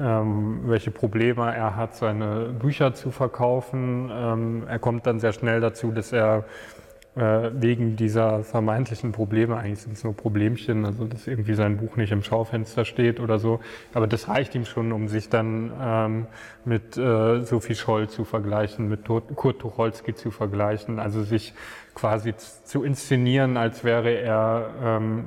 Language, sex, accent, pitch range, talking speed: German, male, German, 110-120 Hz, 150 wpm